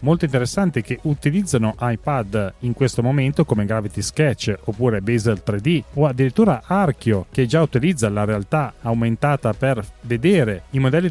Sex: male